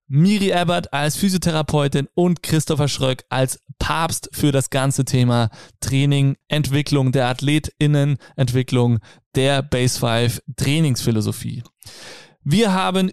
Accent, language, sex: German, German, male